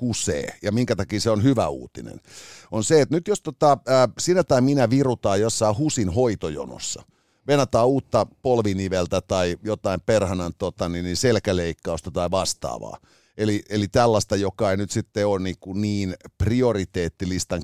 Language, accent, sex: Finnish, native, male